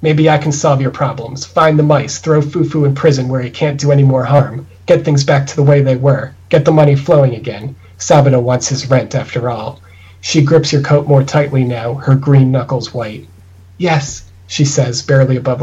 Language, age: English, 40-59